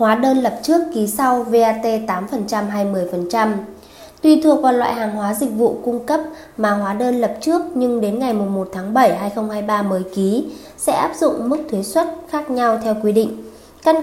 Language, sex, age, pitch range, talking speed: Vietnamese, female, 20-39, 215-275 Hz, 195 wpm